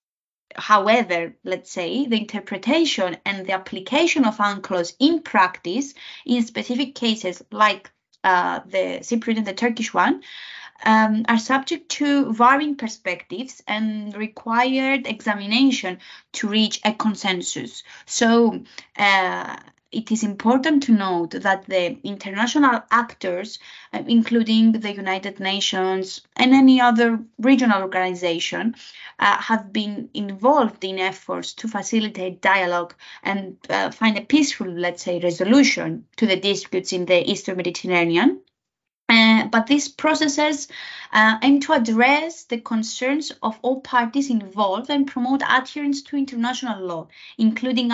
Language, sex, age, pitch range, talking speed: English, female, 20-39, 195-265 Hz, 125 wpm